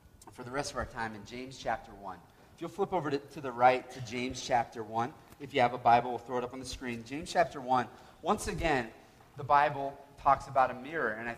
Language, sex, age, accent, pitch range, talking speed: English, male, 30-49, American, 115-140 Hz, 250 wpm